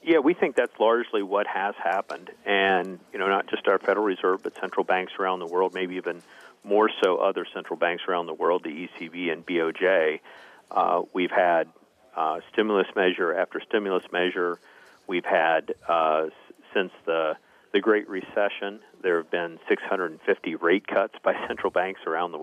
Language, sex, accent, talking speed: English, male, American, 170 wpm